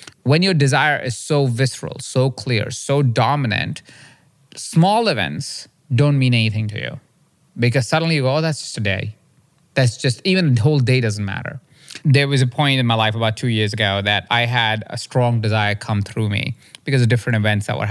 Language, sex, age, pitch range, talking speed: English, male, 20-39, 110-140 Hz, 200 wpm